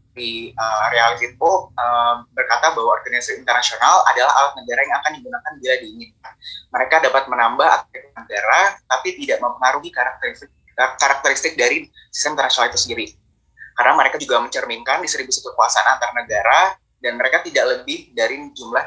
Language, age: Indonesian, 20-39